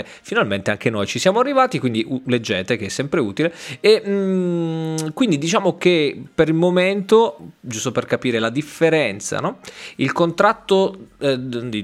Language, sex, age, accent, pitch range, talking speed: Italian, male, 20-39, native, 105-155 Hz, 150 wpm